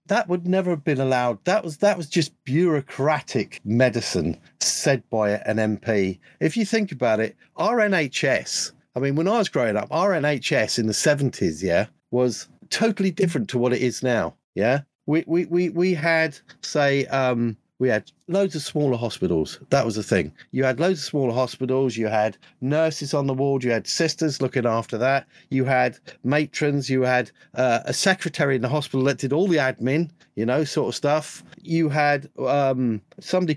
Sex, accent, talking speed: male, British, 190 wpm